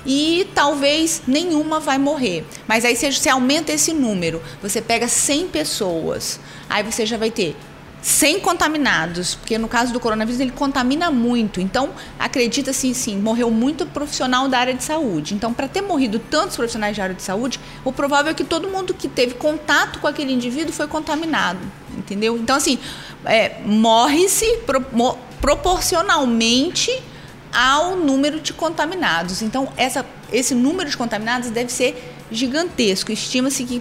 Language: Portuguese